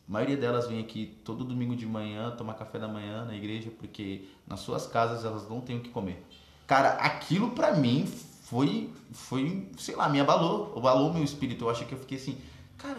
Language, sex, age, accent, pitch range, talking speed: Portuguese, male, 20-39, Brazilian, 110-140 Hz, 210 wpm